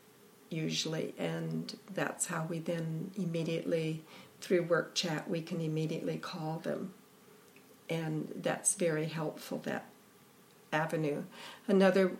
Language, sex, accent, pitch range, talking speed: English, female, American, 165-200 Hz, 110 wpm